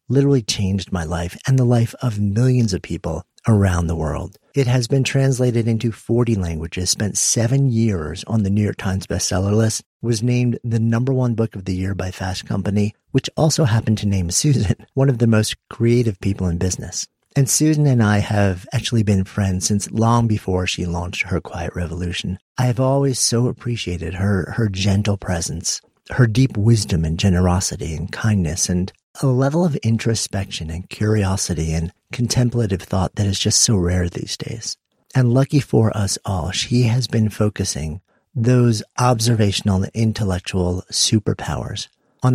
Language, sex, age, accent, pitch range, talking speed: English, male, 50-69, American, 95-125 Hz, 170 wpm